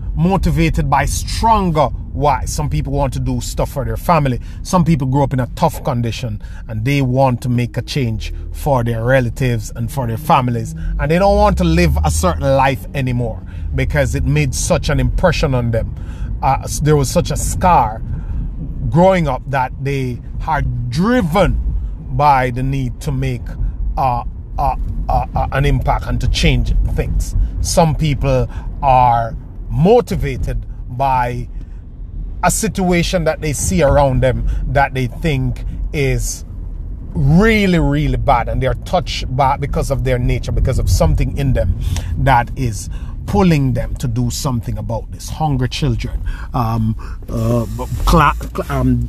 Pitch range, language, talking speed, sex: 90-140 Hz, English, 160 wpm, male